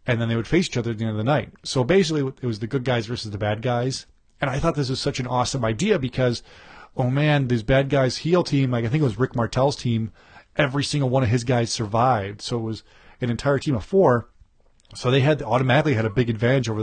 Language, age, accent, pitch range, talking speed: English, 30-49, American, 110-135 Hz, 260 wpm